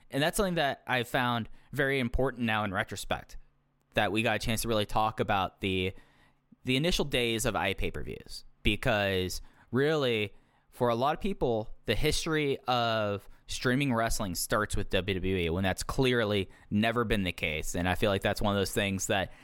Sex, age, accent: male, 10-29, American